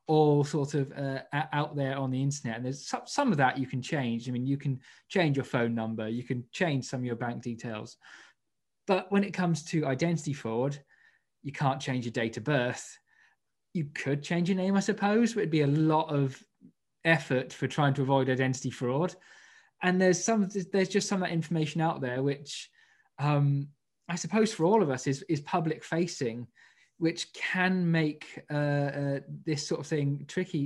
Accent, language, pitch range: British, English, 130-160 Hz